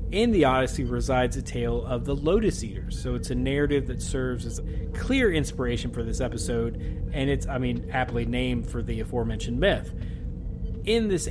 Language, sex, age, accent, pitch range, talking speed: English, male, 30-49, American, 110-135 Hz, 185 wpm